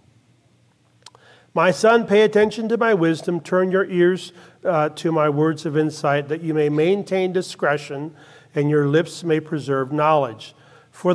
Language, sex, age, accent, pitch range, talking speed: English, male, 40-59, American, 145-175 Hz, 150 wpm